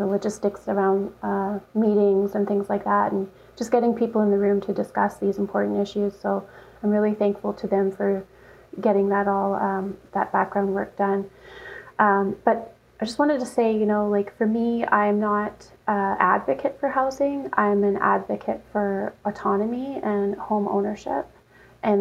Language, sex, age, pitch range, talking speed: English, female, 30-49, 195-210 Hz, 170 wpm